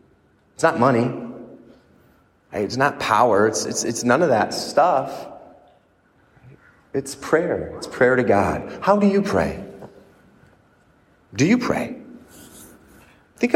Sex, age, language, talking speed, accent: male, 30-49, English, 120 wpm, American